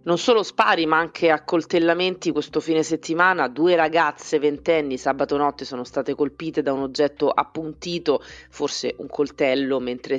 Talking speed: 145 wpm